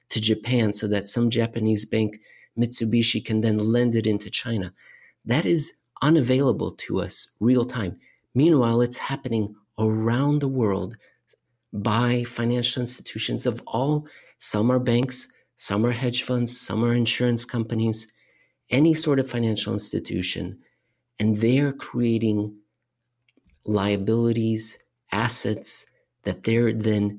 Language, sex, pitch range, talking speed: English, male, 110-125 Hz, 125 wpm